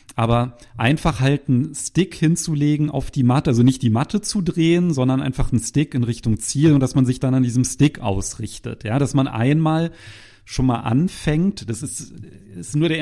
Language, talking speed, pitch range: German, 200 wpm, 110-135 Hz